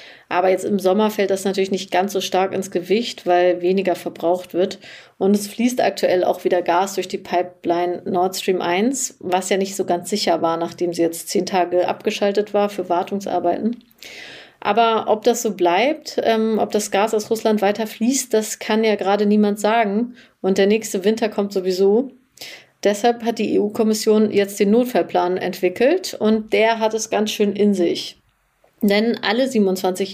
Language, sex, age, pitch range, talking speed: German, female, 30-49, 185-225 Hz, 180 wpm